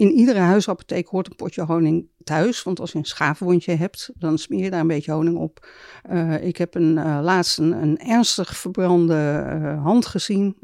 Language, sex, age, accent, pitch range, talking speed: Dutch, female, 60-79, Dutch, 155-190 Hz, 195 wpm